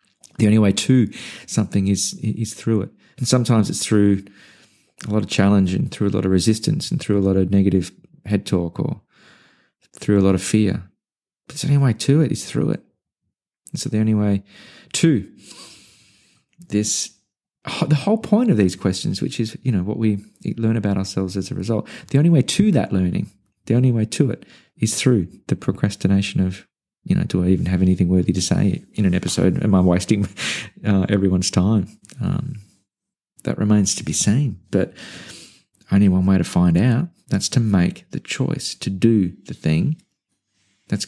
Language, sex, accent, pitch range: English, male, Australian, 95-115 Hz